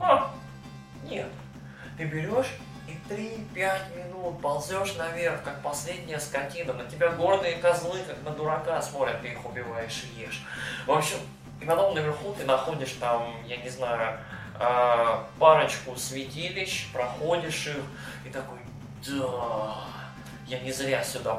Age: 20-39